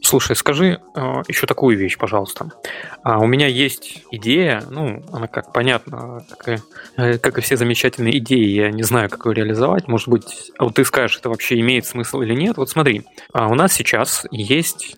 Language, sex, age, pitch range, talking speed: Russian, male, 20-39, 120-145 Hz, 175 wpm